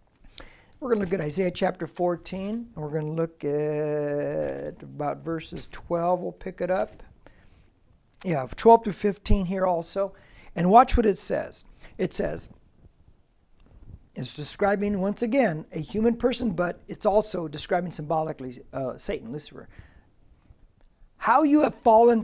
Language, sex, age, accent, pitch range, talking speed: English, male, 60-79, American, 170-230 Hz, 140 wpm